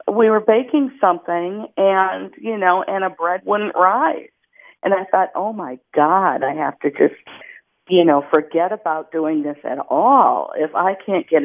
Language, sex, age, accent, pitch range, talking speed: English, female, 50-69, American, 150-195 Hz, 180 wpm